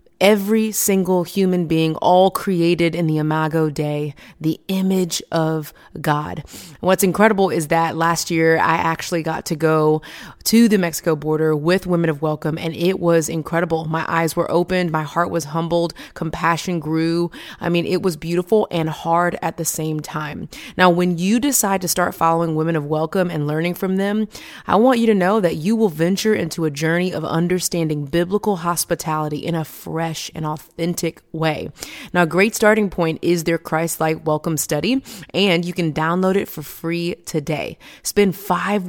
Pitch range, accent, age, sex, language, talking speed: 160-185 Hz, American, 30-49, female, English, 175 wpm